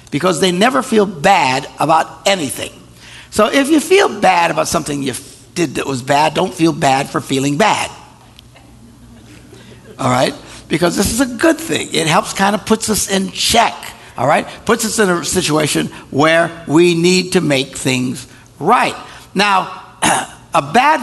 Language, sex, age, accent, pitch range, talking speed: English, male, 60-79, American, 140-195 Hz, 165 wpm